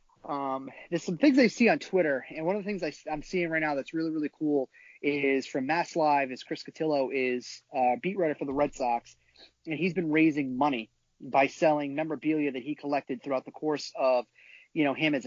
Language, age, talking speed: English, 30-49, 215 wpm